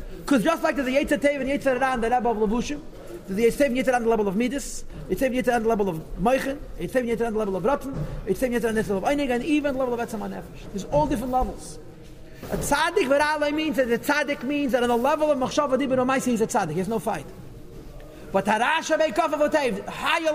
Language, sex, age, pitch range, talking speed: English, male, 40-59, 205-285 Hz, 240 wpm